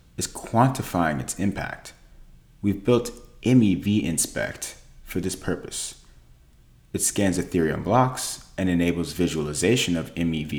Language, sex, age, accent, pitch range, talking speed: English, male, 40-59, American, 75-105 Hz, 115 wpm